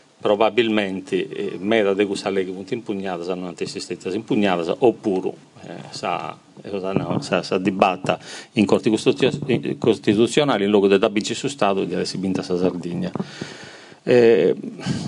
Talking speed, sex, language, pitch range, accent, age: 125 wpm, male, Italian, 95-120 Hz, native, 40-59